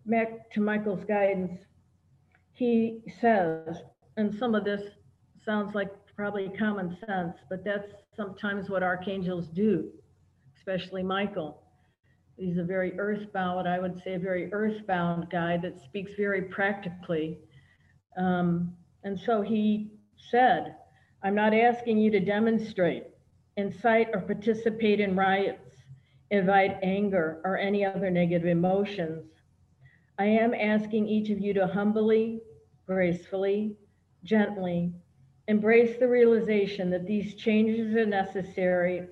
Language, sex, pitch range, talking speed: English, female, 180-215 Hz, 120 wpm